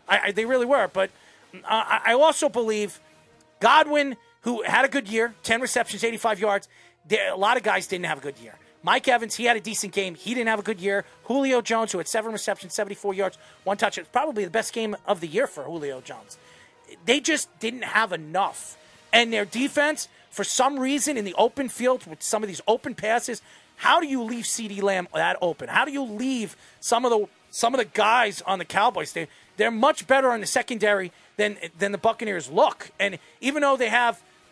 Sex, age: male, 30-49